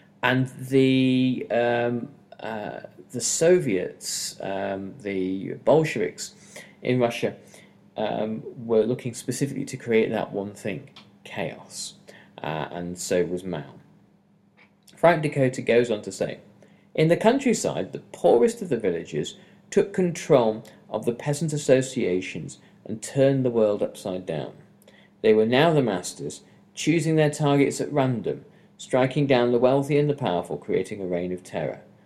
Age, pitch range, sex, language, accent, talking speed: 40-59, 105-150 Hz, male, English, British, 140 wpm